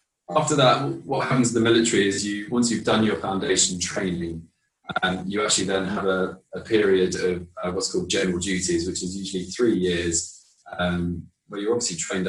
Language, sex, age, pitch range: English, male, 20-39, 85-100 Hz